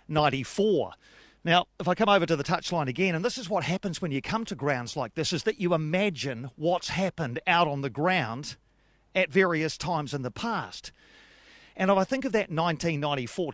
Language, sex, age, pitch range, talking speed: English, male, 40-59, 150-195 Hz, 200 wpm